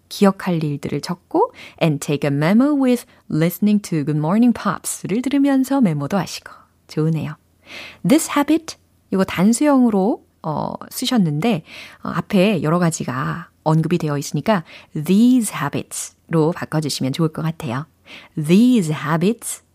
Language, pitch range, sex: Korean, 155-220 Hz, female